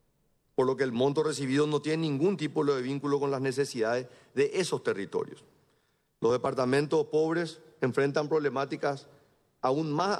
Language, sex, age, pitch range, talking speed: Spanish, male, 40-59, 140-170 Hz, 145 wpm